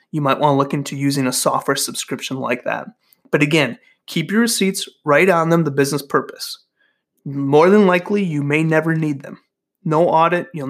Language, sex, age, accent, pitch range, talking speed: English, male, 30-49, American, 145-195 Hz, 190 wpm